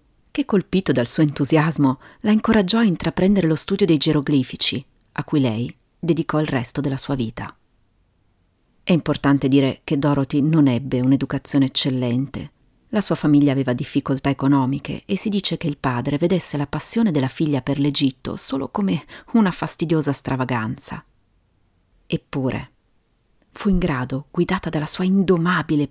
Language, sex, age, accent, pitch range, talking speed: Italian, female, 40-59, native, 130-160 Hz, 145 wpm